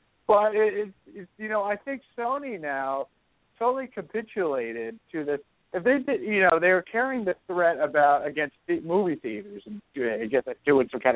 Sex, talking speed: male, 170 wpm